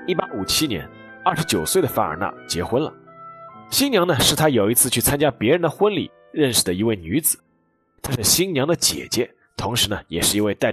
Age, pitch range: 20-39, 100-165 Hz